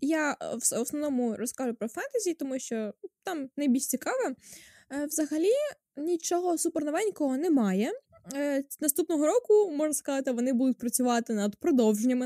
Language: Ukrainian